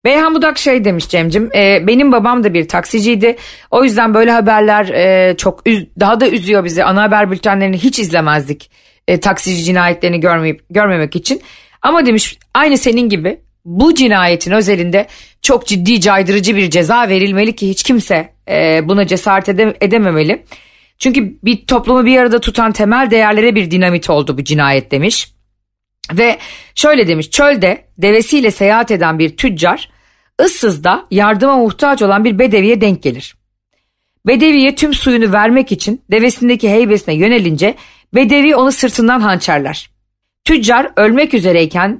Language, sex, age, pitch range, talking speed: Turkish, female, 40-59, 185-240 Hz, 135 wpm